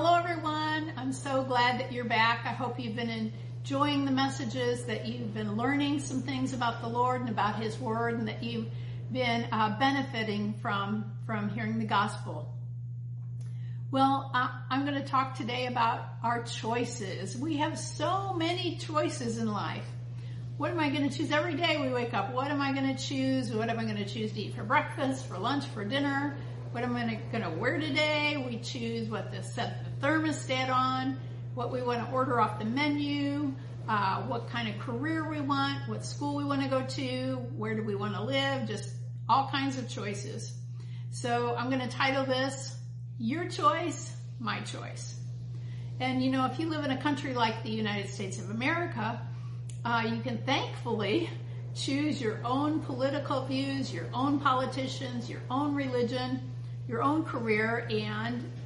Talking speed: 180 wpm